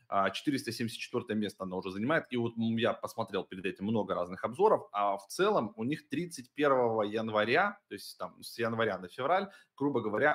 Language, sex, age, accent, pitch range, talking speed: Russian, male, 20-39, native, 100-130 Hz, 175 wpm